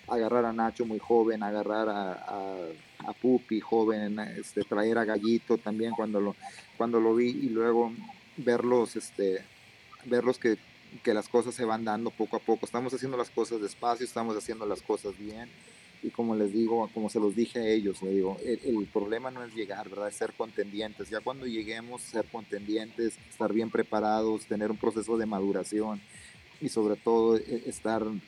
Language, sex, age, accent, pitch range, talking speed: Spanish, male, 30-49, Mexican, 105-115 Hz, 180 wpm